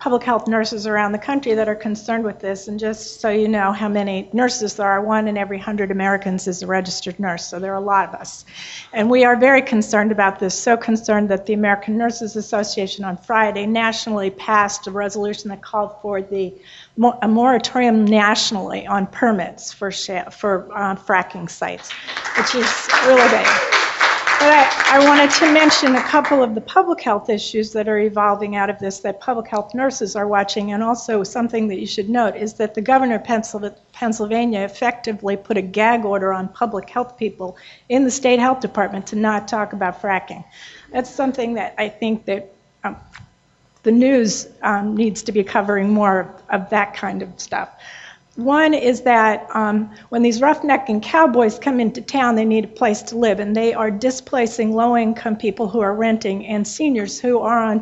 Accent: American